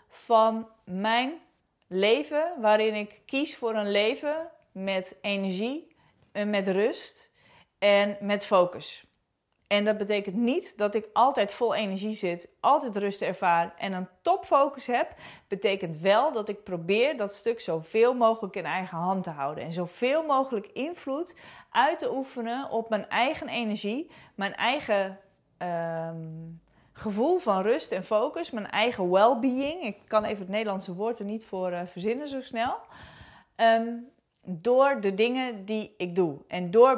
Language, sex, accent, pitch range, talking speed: Dutch, female, Dutch, 185-235 Hz, 145 wpm